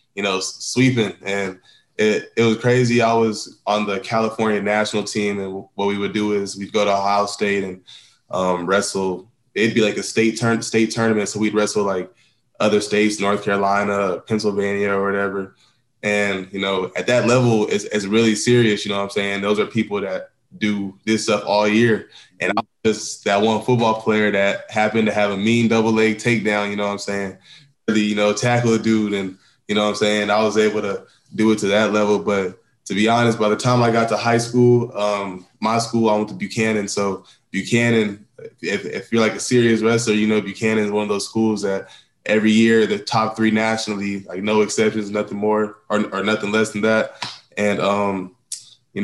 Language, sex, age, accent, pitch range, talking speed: English, male, 20-39, American, 100-110 Hz, 210 wpm